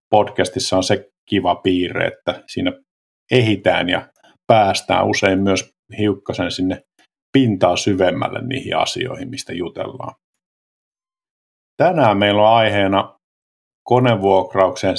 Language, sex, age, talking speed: Finnish, male, 50-69, 100 wpm